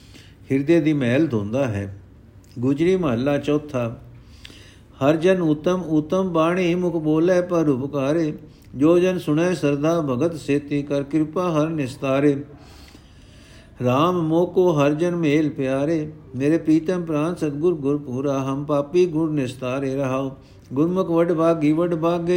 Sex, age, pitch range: male, 60-79, 135-165 Hz